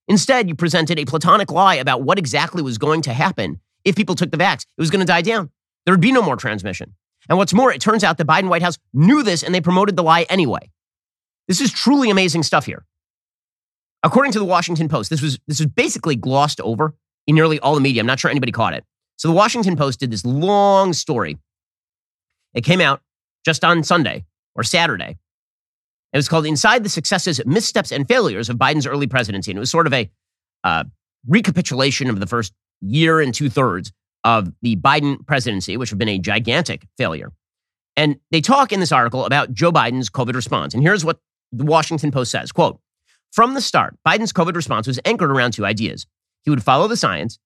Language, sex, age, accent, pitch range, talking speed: English, male, 30-49, American, 115-180 Hz, 210 wpm